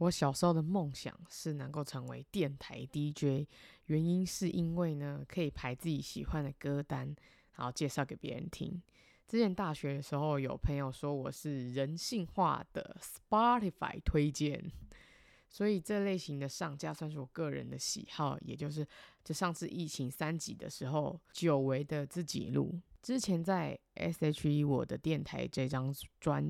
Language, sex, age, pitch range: Chinese, female, 20-39, 140-170 Hz